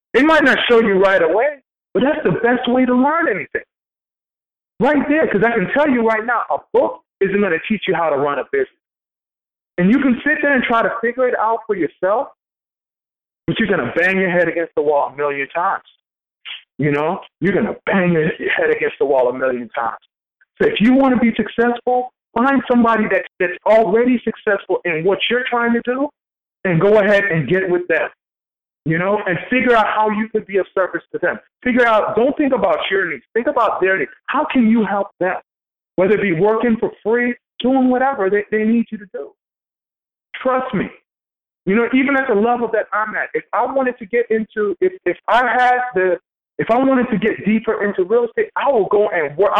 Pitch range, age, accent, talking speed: 195-255 Hz, 40-59, American, 220 wpm